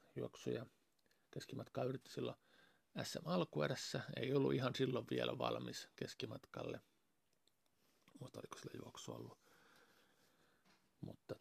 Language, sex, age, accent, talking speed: Finnish, male, 50-69, native, 100 wpm